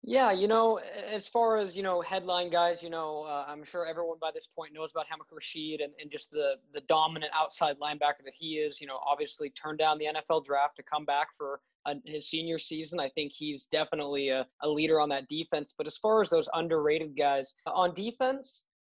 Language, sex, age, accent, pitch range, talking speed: English, male, 20-39, American, 155-190 Hz, 215 wpm